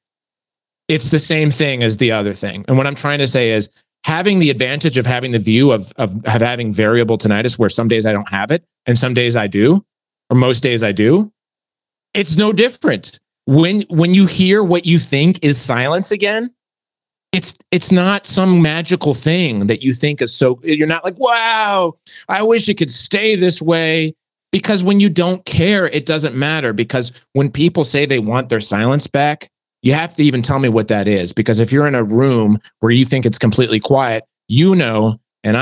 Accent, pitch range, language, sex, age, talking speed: American, 115-160 Hz, English, male, 30-49, 205 wpm